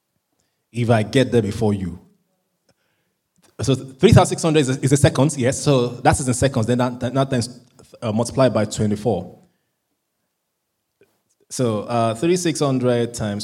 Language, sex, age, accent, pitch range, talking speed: English, male, 20-39, Nigerian, 115-160 Hz, 130 wpm